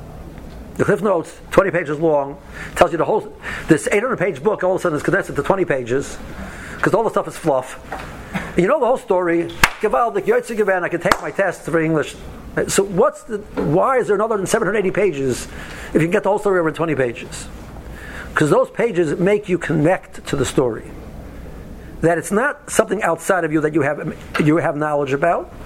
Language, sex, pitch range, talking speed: English, male, 145-195 Hz, 205 wpm